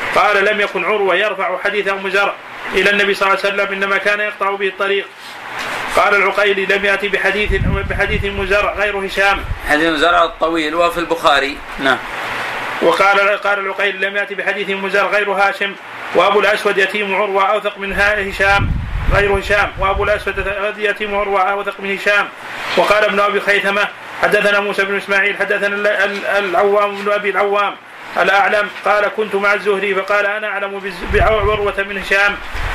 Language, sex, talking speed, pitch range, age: Arabic, male, 155 wpm, 195-205 Hz, 30-49